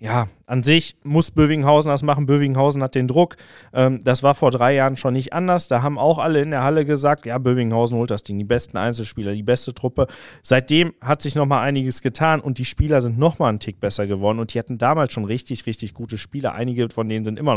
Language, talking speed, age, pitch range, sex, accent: German, 235 wpm, 40-59, 110-130 Hz, male, German